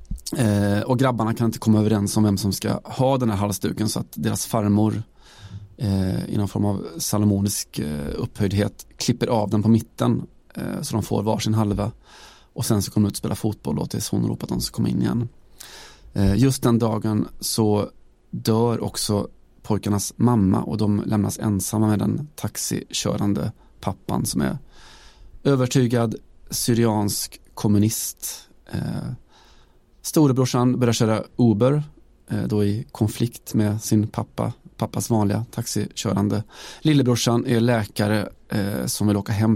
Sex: male